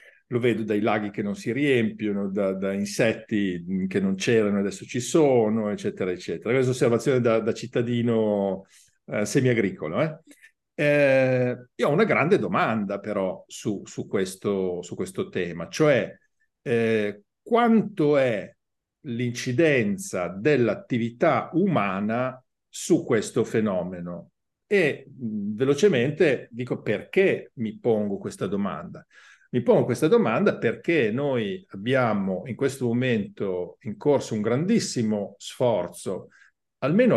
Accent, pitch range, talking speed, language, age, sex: native, 105-135 Hz, 115 wpm, Italian, 50-69, male